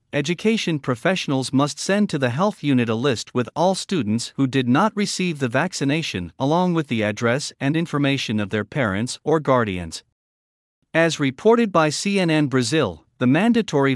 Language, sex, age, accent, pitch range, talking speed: English, male, 50-69, American, 120-170 Hz, 160 wpm